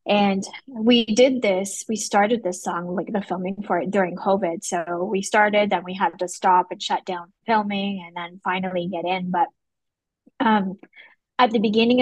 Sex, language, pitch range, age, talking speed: female, English, 180-210 Hz, 20-39, 185 wpm